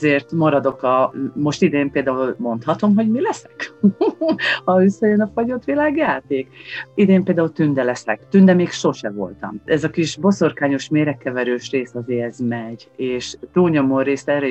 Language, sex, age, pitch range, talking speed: Hungarian, female, 40-59, 120-145 Hz, 155 wpm